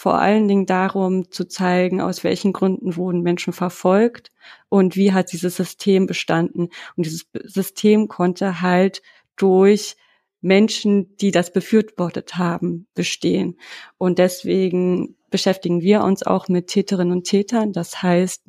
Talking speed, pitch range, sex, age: 135 wpm, 180-205 Hz, female, 30-49